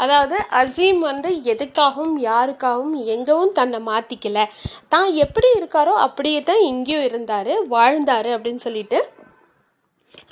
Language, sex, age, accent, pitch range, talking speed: Tamil, female, 30-49, native, 245-320 Hz, 105 wpm